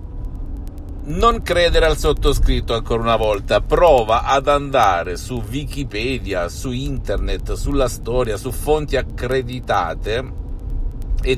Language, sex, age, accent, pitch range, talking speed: Italian, male, 50-69, native, 90-125 Hz, 105 wpm